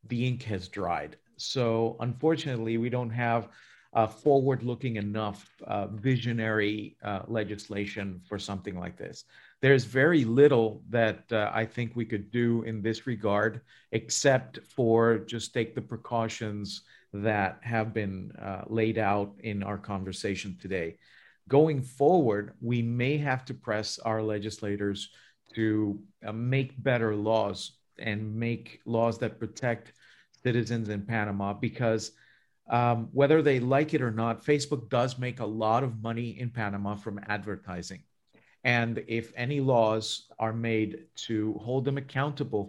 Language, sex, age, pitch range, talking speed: Spanish, male, 50-69, 105-125 Hz, 140 wpm